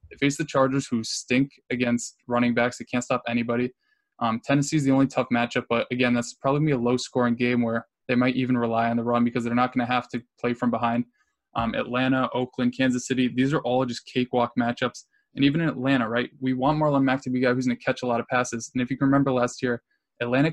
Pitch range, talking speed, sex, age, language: 120-130 Hz, 255 wpm, male, 10-29, English